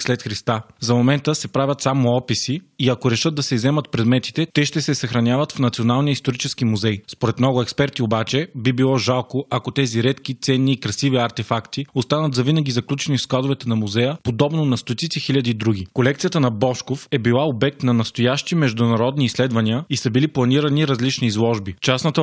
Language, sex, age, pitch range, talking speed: Bulgarian, male, 20-39, 120-140 Hz, 180 wpm